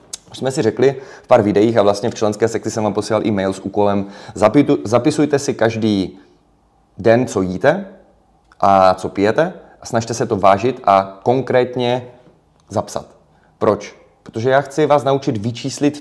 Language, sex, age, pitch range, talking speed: Czech, male, 30-49, 100-130 Hz, 155 wpm